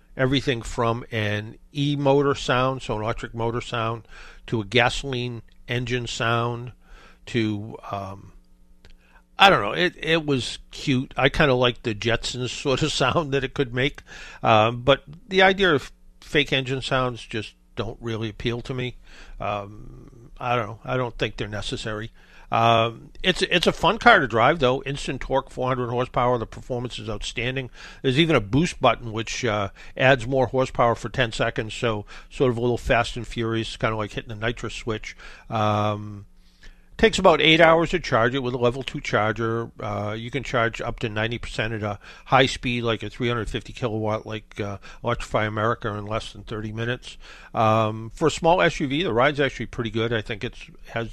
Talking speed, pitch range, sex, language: 185 wpm, 110-135 Hz, male, English